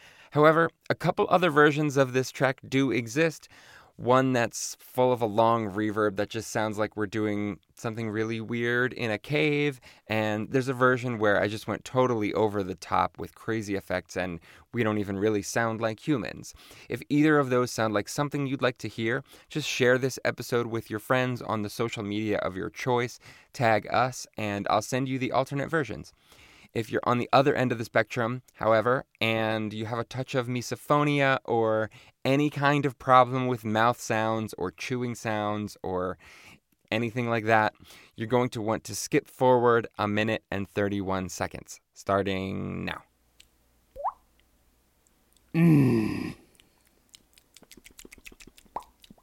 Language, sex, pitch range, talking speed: English, male, 105-130 Hz, 160 wpm